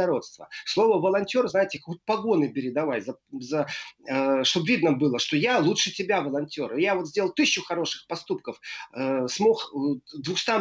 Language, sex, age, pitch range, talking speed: Russian, male, 30-49, 155-210 Hz, 125 wpm